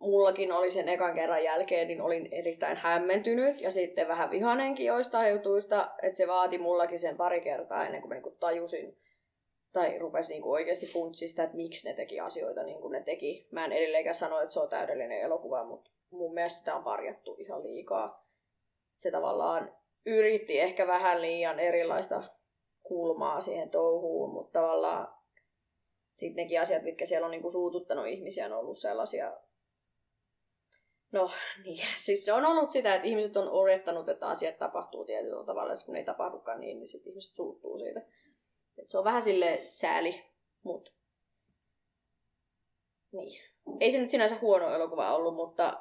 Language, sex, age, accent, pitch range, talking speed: Finnish, female, 20-39, native, 170-230 Hz, 155 wpm